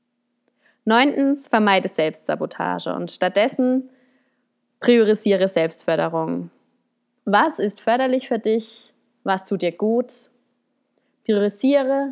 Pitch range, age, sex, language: 190-250 Hz, 20-39, female, German